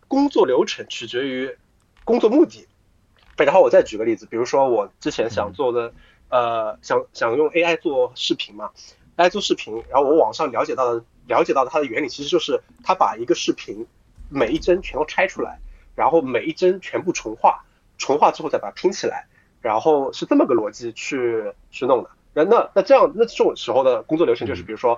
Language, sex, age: Chinese, male, 30-49